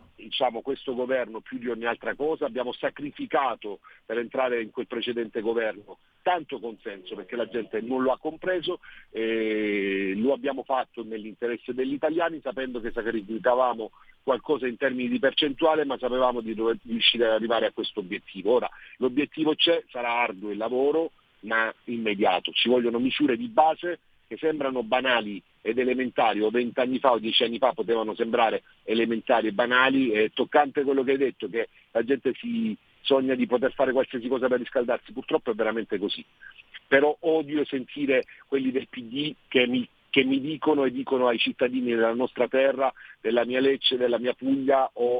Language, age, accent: Italian, 50-69, native